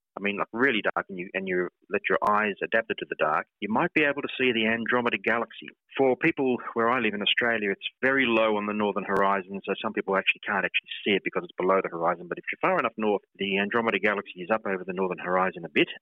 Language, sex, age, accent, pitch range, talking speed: English, male, 30-49, Australian, 95-130 Hz, 260 wpm